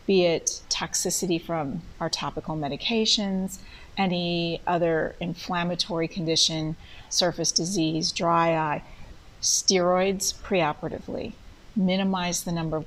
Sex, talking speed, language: female, 100 wpm, English